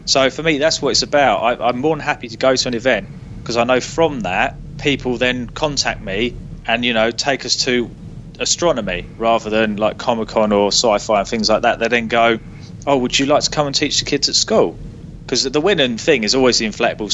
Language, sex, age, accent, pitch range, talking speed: English, male, 20-39, British, 120-150 Hz, 230 wpm